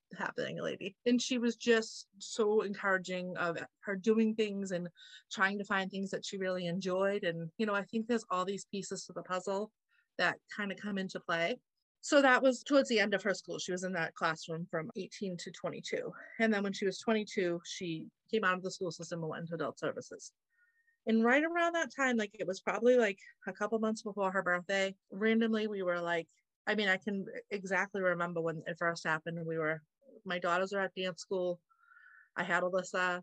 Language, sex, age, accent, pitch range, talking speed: English, female, 30-49, American, 180-220 Hz, 210 wpm